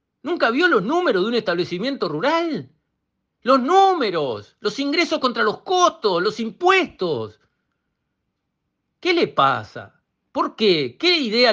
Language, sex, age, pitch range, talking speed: Spanish, male, 50-69, 175-285 Hz, 125 wpm